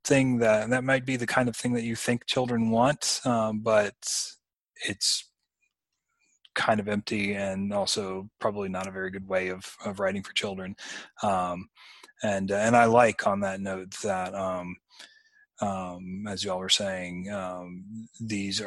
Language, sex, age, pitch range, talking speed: English, male, 30-49, 90-110 Hz, 160 wpm